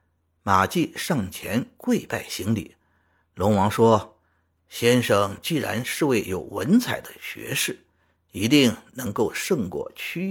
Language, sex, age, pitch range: Chinese, male, 50-69, 85-120 Hz